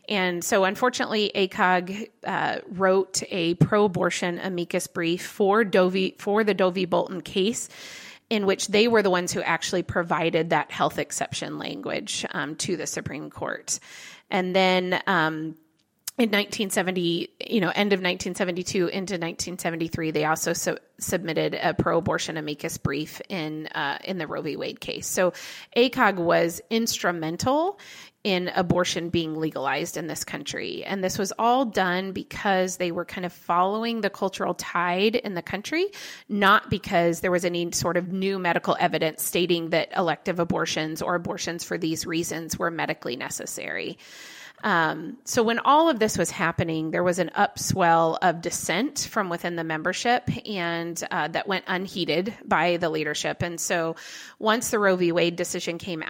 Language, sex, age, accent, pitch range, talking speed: English, female, 30-49, American, 170-195 Hz, 160 wpm